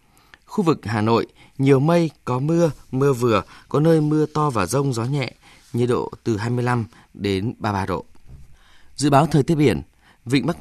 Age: 20-39